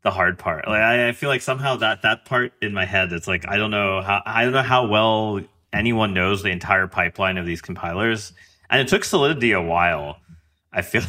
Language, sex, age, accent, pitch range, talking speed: English, male, 30-49, American, 90-120 Hz, 220 wpm